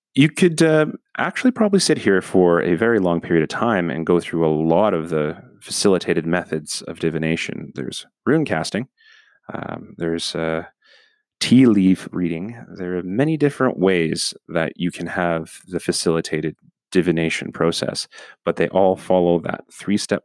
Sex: male